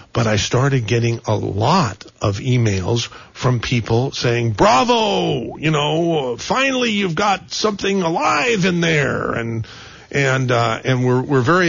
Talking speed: 145 wpm